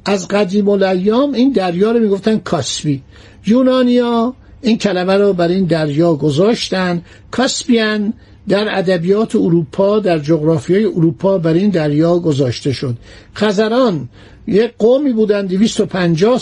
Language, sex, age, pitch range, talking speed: Persian, male, 60-79, 170-220 Hz, 120 wpm